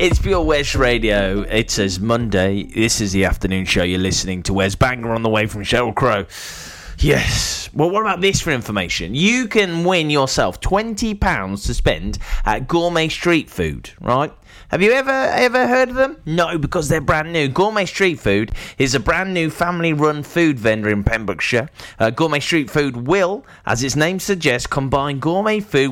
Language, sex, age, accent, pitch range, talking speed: English, male, 20-39, British, 110-160 Hz, 180 wpm